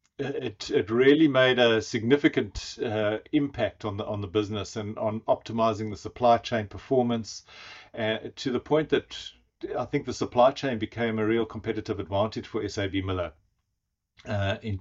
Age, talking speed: 50-69, 160 wpm